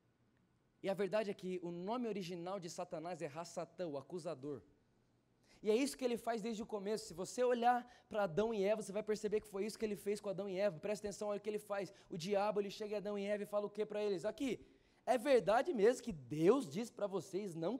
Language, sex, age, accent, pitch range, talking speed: Portuguese, male, 20-39, Brazilian, 170-220 Hz, 245 wpm